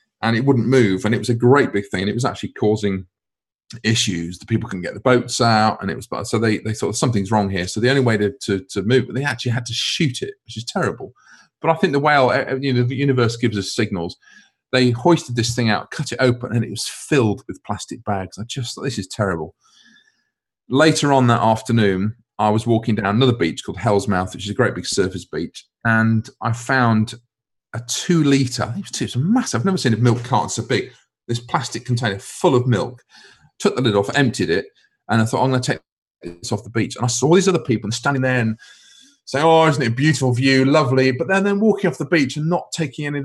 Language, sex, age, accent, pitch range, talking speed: English, male, 40-59, British, 110-135 Hz, 245 wpm